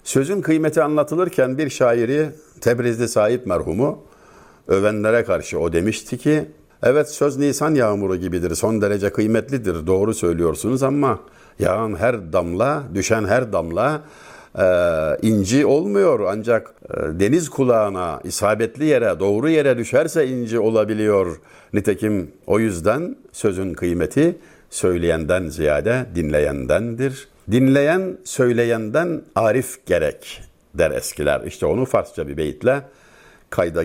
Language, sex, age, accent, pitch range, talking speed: Turkish, male, 60-79, native, 105-140 Hz, 115 wpm